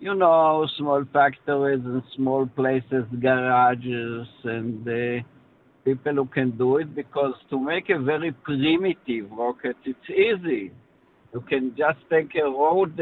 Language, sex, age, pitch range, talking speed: English, male, 60-79, 125-150 Hz, 140 wpm